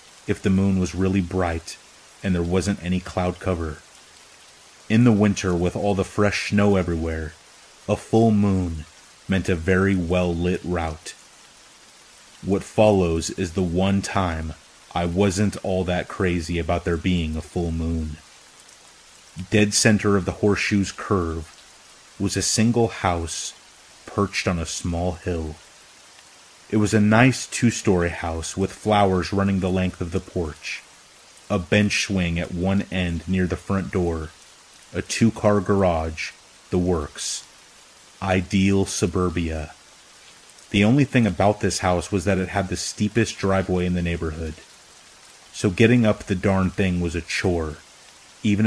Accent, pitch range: American, 85-100 Hz